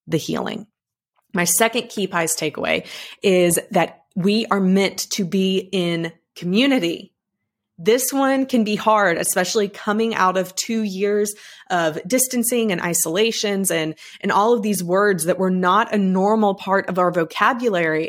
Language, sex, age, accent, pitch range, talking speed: English, female, 20-39, American, 175-210 Hz, 155 wpm